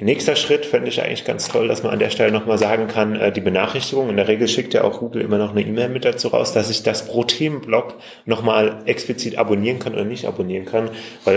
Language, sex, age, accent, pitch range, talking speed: German, male, 30-49, German, 105-120 Hz, 240 wpm